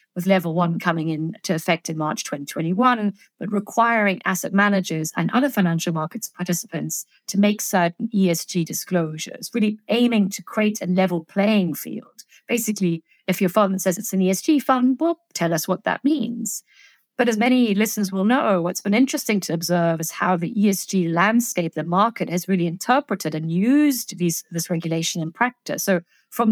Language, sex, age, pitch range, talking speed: English, female, 50-69, 175-215 Hz, 170 wpm